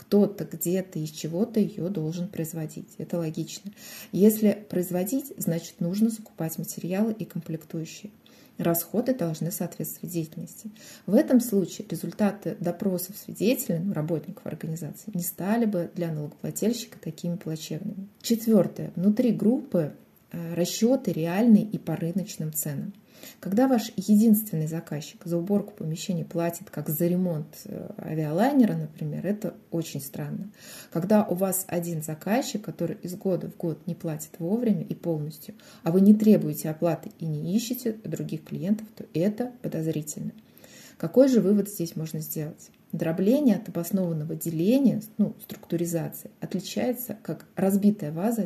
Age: 30-49